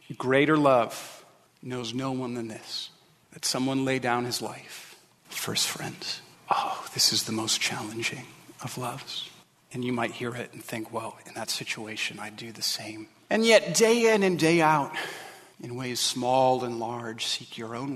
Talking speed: 180 wpm